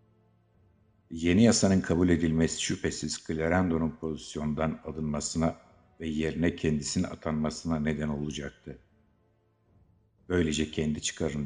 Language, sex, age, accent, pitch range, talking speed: Turkish, male, 60-79, native, 75-90 Hz, 90 wpm